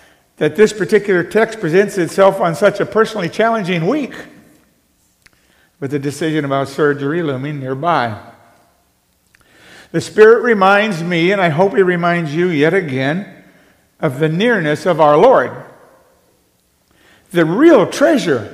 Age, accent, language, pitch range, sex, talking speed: 60-79, American, English, 140-210 Hz, male, 130 wpm